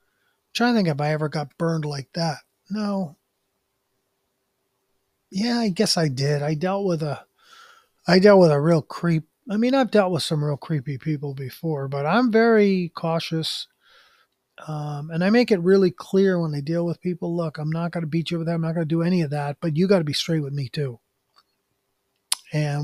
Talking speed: 210 wpm